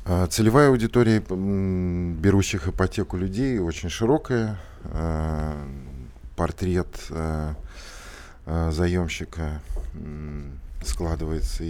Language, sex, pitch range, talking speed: Russian, male, 75-90 Hz, 50 wpm